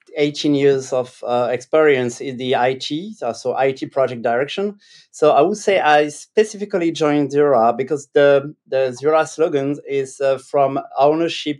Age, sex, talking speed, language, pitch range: 30-49, male, 155 wpm, English, 130-160 Hz